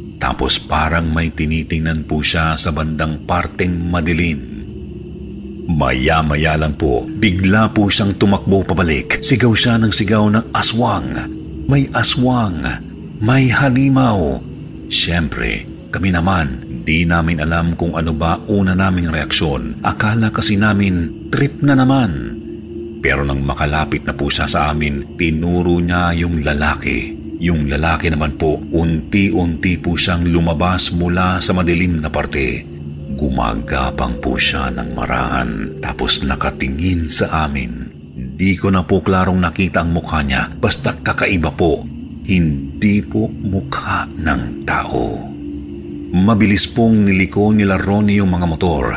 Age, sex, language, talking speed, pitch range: 40-59, male, Filipino, 125 wpm, 75-100 Hz